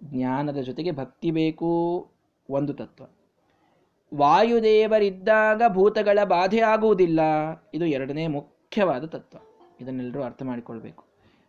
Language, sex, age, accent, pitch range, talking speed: Kannada, male, 20-39, native, 125-150 Hz, 90 wpm